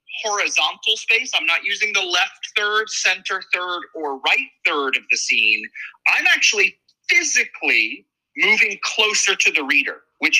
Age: 30-49